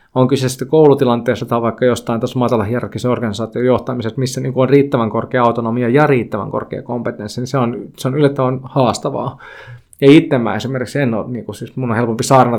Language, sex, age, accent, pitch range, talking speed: Finnish, male, 20-39, native, 120-135 Hz, 190 wpm